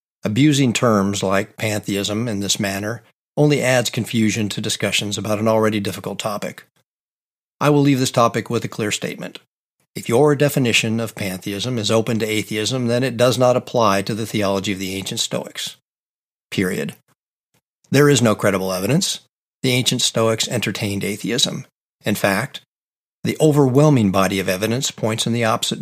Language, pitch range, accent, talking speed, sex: English, 105-130 Hz, American, 160 wpm, male